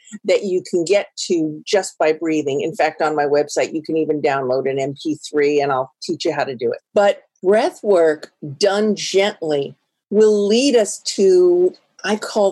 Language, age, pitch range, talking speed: English, 50-69, 160-215 Hz, 180 wpm